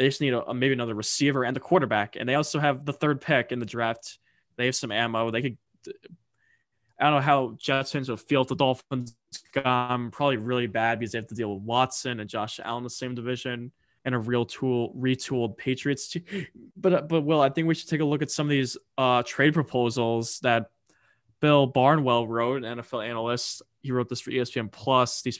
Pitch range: 120-140 Hz